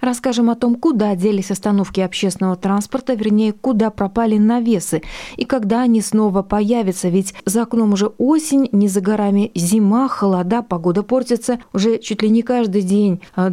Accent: native